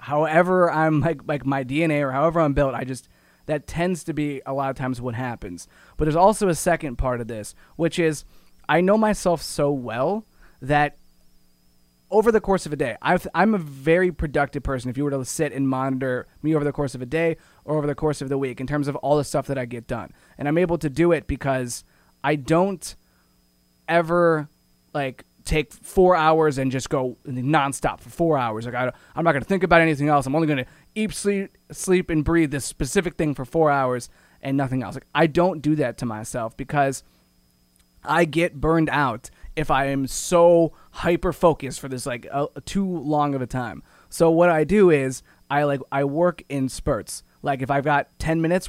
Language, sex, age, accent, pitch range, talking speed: English, male, 20-39, American, 130-165 Hz, 210 wpm